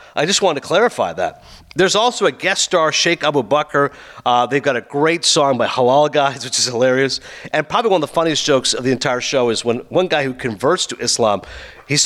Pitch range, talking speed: 140-180 Hz, 230 wpm